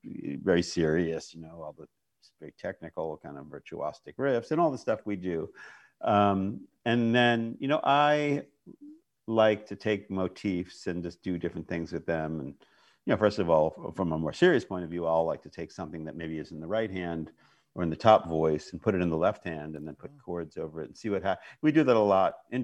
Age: 50-69